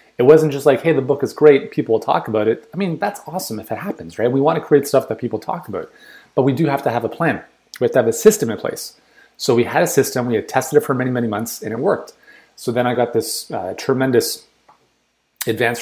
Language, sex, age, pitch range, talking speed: English, male, 30-49, 115-150 Hz, 265 wpm